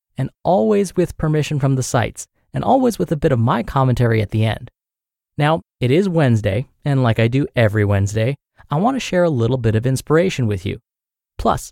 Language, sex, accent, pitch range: English, male, American, 110-160 Hz